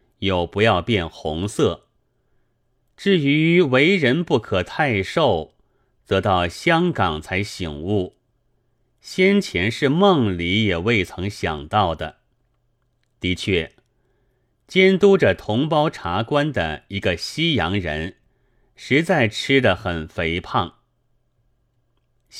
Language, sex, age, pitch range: Chinese, male, 30-49, 90-125 Hz